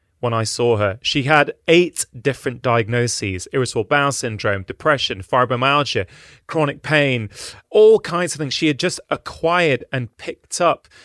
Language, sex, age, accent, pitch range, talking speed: English, male, 30-49, British, 120-160 Hz, 145 wpm